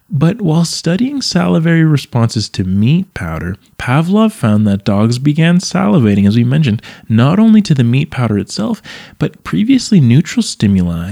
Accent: American